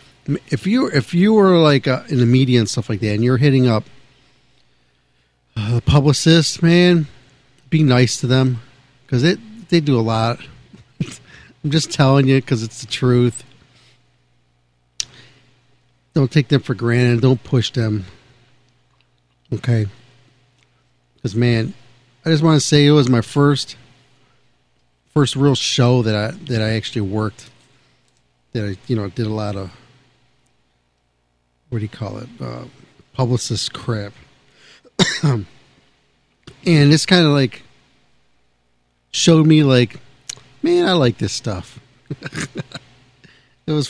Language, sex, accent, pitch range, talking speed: English, male, American, 105-140 Hz, 135 wpm